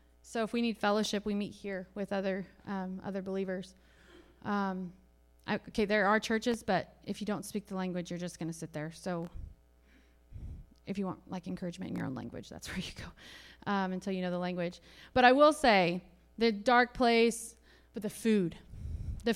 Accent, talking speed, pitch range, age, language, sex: American, 195 wpm, 185-225 Hz, 30-49, English, female